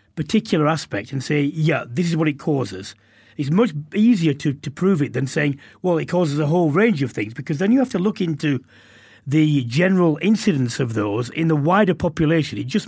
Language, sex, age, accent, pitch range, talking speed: English, male, 40-59, British, 135-180 Hz, 210 wpm